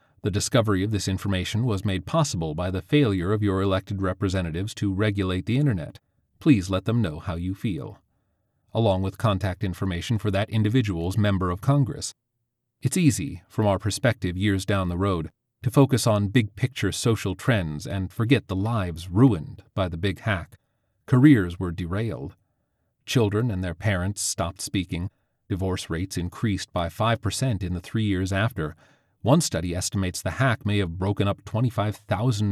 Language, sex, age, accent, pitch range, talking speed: English, male, 40-59, American, 95-120 Hz, 165 wpm